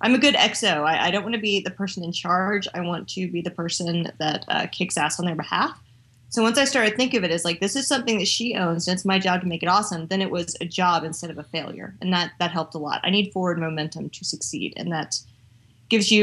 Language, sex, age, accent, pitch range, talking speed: English, female, 30-49, American, 170-210 Hz, 280 wpm